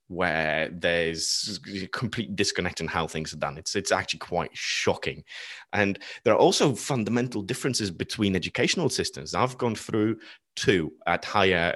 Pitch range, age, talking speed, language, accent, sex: 90-125 Hz, 30-49, 155 wpm, English, British, male